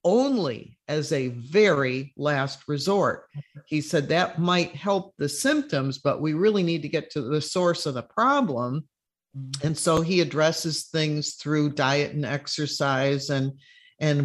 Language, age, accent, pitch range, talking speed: English, 50-69, American, 145-180 Hz, 150 wpm